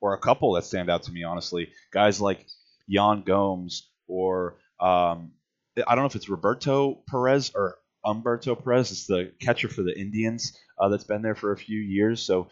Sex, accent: male, American